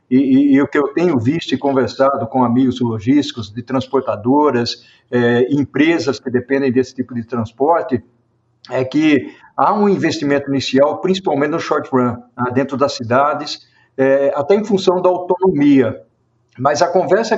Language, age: Portuguese, 60-79